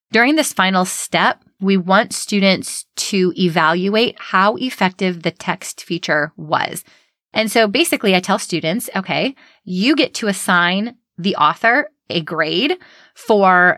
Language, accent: English, American